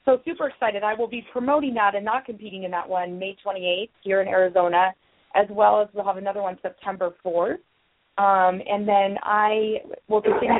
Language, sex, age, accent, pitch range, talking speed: English, female, 30-49, American, 185-215 Hz, 190 wpm